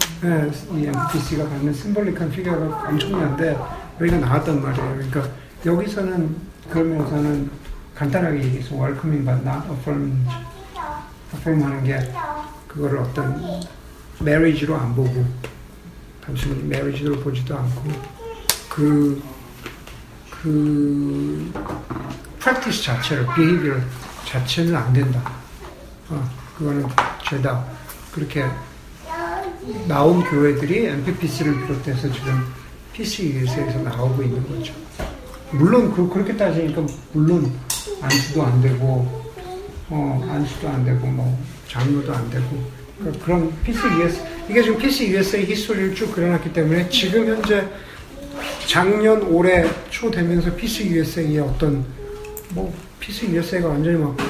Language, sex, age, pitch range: Korean, male, 60-79, 135-175 Hz